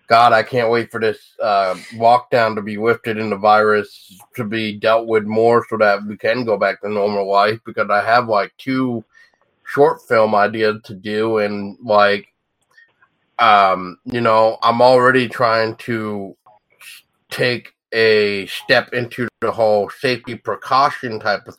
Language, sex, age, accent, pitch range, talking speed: English, male, 30-49, American, 105-120 Hz, 160 wpm